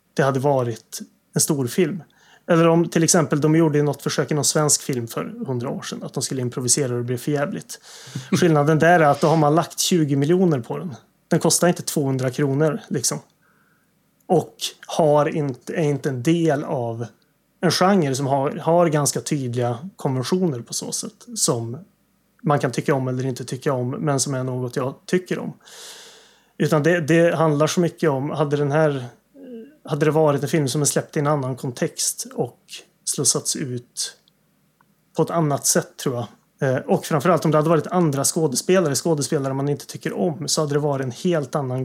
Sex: male